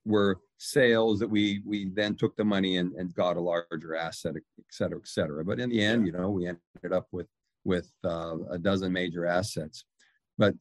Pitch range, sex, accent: 90-110 Hz, male, American